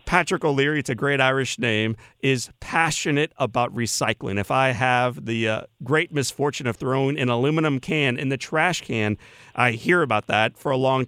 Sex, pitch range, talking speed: male, 115-145 Hz, 185 wpm